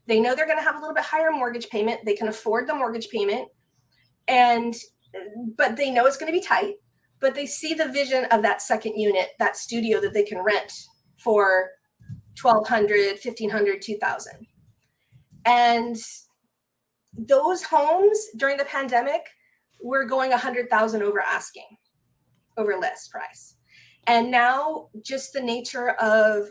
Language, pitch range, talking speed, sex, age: English, 220-280 Hz, 150 wpm, female, 20-39